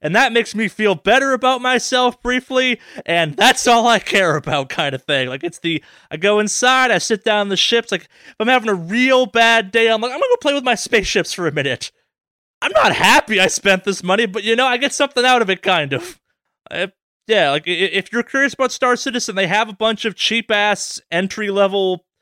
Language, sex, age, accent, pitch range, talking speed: English, male, 20-39, American, 165-230 Hz, 225 wpm